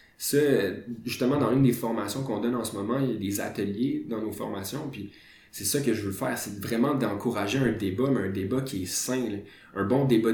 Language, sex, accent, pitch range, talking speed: French, male, Canadian, 105-130 Hz, 230 wpm